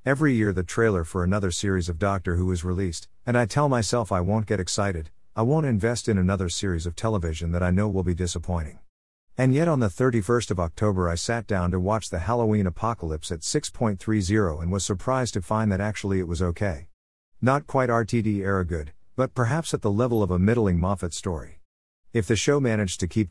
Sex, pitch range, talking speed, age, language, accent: male, 90-115 Hz, 210 wpm, 50-69, English, American